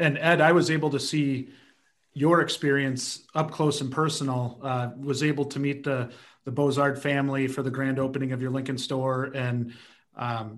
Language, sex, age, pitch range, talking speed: English, male, 30-49, 135-170 Hz, 180 wpm